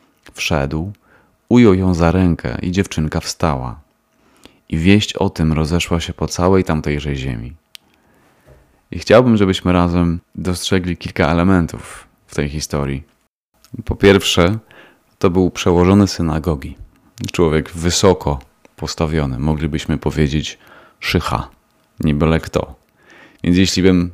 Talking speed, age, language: 105 wpm, 30-49, Polish